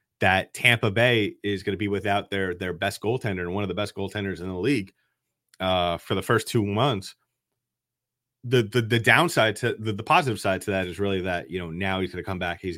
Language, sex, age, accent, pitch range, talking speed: English, male, 30-49, American, 90-115 Hz, 235 wpm